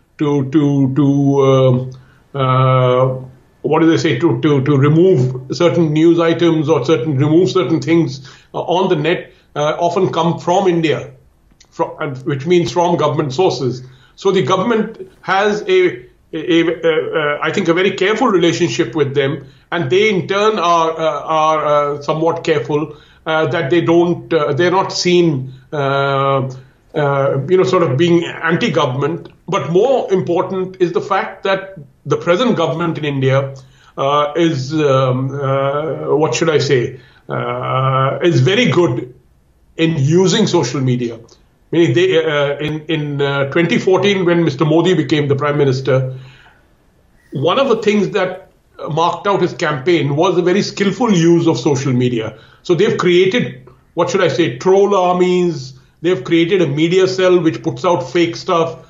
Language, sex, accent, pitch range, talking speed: English, male, Indian, 140-180 Hz, 160 wpm